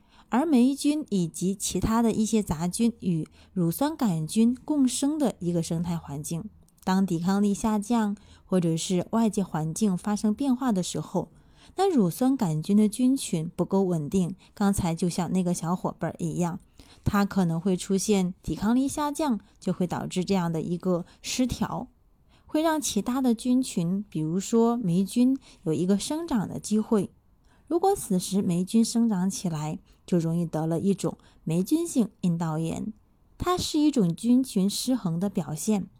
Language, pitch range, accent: Chinese, 180-235 Hz, native